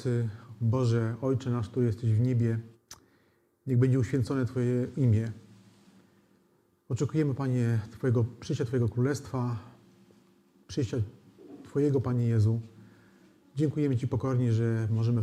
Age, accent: 30-49, native